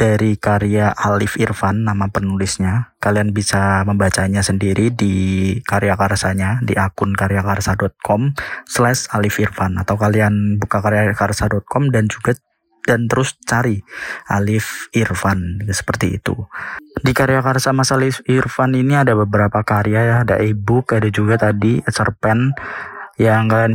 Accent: native